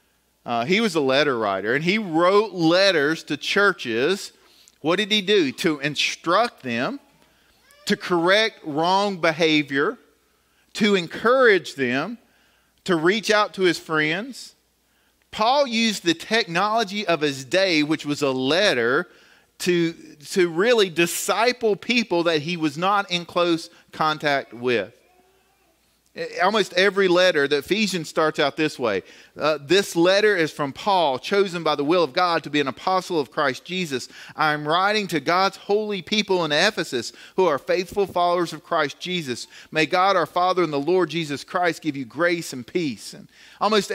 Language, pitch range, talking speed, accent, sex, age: English, 160-200 Hz, 155 wpm, American, male, 40-59